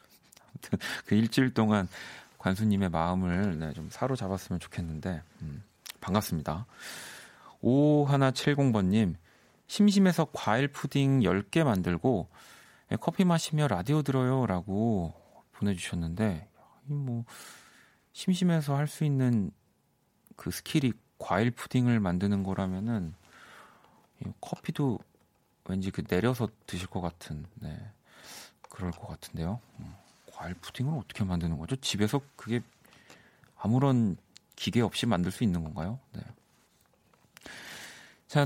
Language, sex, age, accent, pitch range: Korean, male, 40-59, native, 95-140 Hz